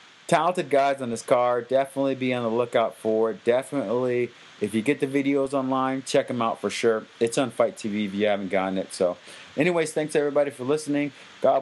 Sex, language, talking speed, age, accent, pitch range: male, English, 205 wpm, 30-49, American, 100-130 Hz